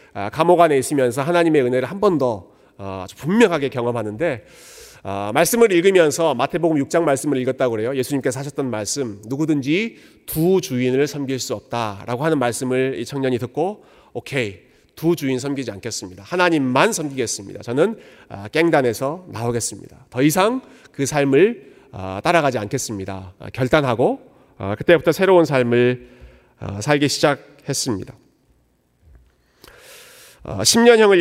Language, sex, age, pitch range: Korean, male, 40-59, 120-160 Hz